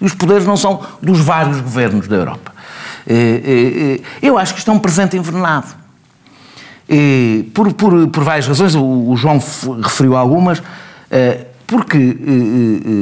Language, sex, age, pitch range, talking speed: Portuguese, male, 50-69, 115-155 Hz, 140 wpm